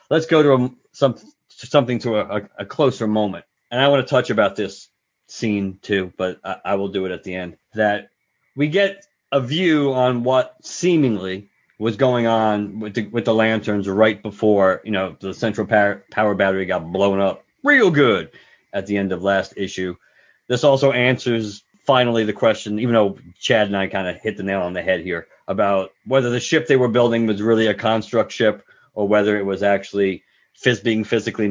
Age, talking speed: 40-59, 200 wpm